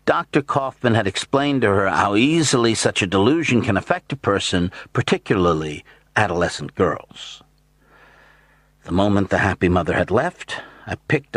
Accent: American